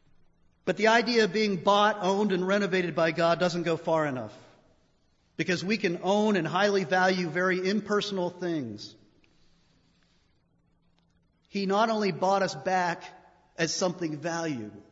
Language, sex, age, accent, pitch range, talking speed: English, male, 40-59, American, 150-195 Hz, 135 wpm